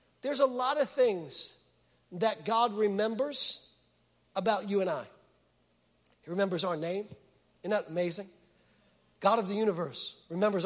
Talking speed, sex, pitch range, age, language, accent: 135 wpm, male, 220-340 Hz, 40-59, English, American